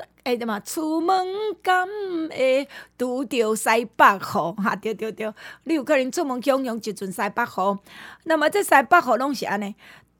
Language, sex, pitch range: Chinese, female, 205-280 Hz